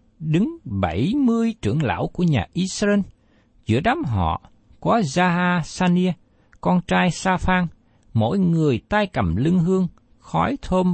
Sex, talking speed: male, 135 wpm